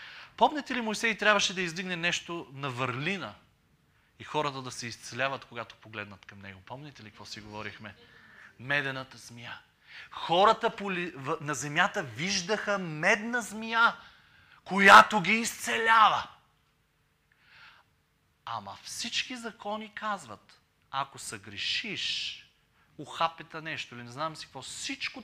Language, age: Bulgarian, 30-49